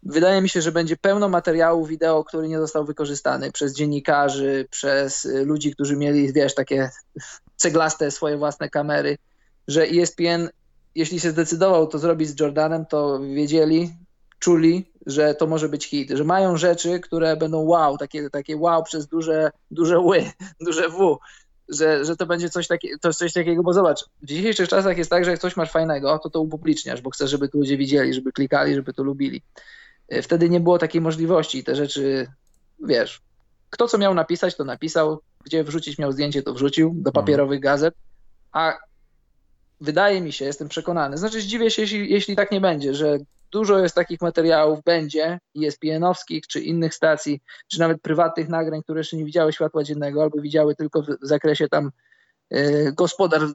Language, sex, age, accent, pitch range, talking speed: Polish, male, 20-39, native, 150-175 Hz, 175 wpm